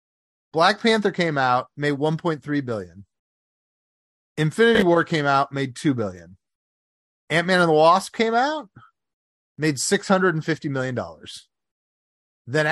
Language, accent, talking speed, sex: English, American, 115 wpm, male